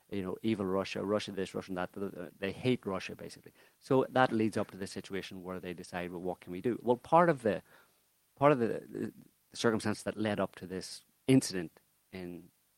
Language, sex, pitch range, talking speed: English, male, 90-105 Hz, 200 wpm